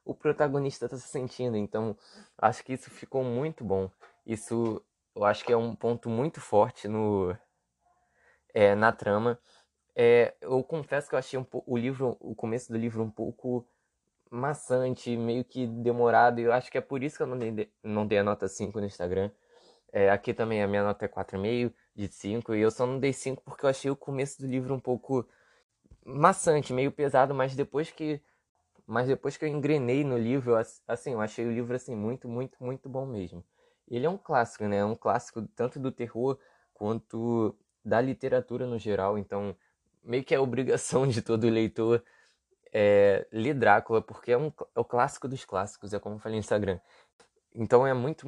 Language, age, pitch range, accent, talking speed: Portuguese, 20-39, 110-135 Hz, Brazilian, 195 wpm